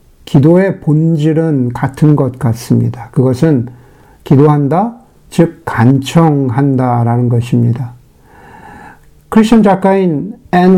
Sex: male